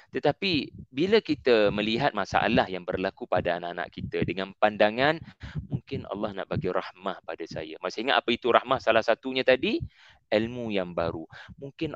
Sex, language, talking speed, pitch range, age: male, Malay, 150 wpm, 95-130 Hz, 30-49